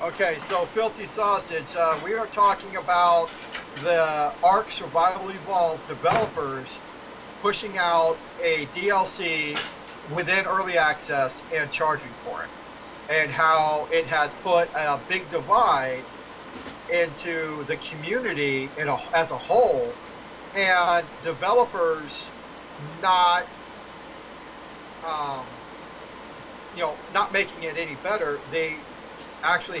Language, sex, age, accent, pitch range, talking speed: English, male, 40-59, American, 150-185 Hz, 110 wpm